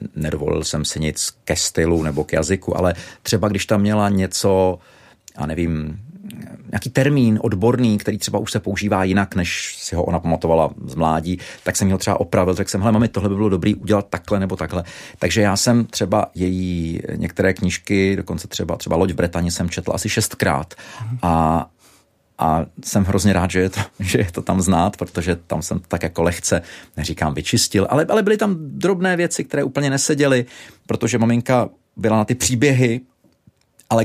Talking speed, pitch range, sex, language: 180 wpm, 90-115 Hz, male, Czech